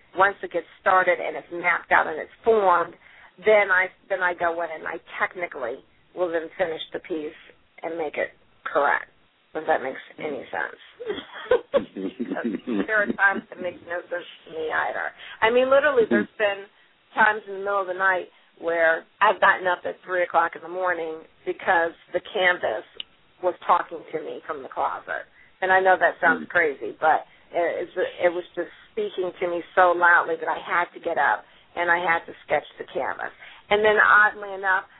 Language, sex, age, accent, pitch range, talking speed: English, female, 40-59, American, 175-205 Hz, 185 wpm